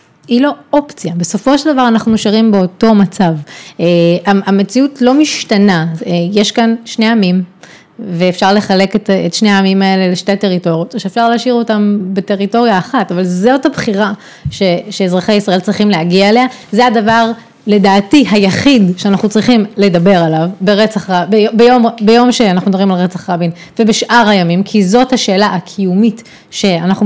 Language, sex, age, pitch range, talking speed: Hebrew, female, 30-49, 185-230 Hz, 145 wpm